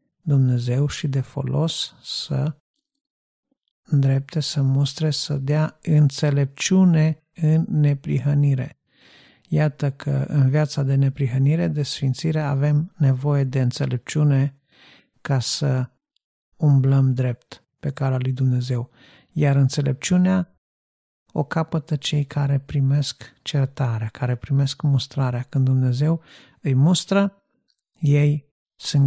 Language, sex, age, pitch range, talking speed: Romanian, male, 50-69, 135-155 Hz, 105 wpm